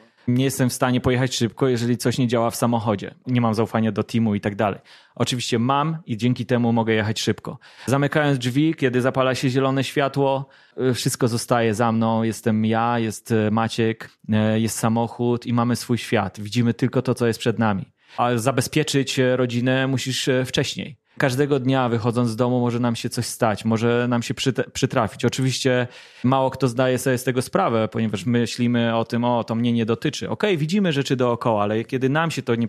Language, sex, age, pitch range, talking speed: Polish, male, 20-39, 115-135 Hz, 185 wpm